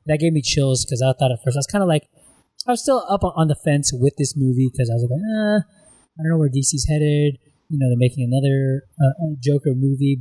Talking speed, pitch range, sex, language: 255 wpm, 120-155 Hz, male, English